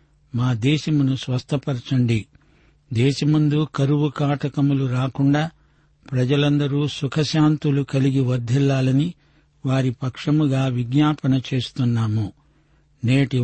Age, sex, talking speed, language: 60-79, male, 70 wpm, Telugu